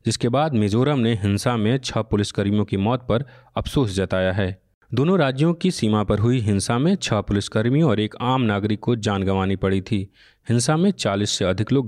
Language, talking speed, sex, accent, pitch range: Hindi, 195 wpm, male, native, 105-130 Hz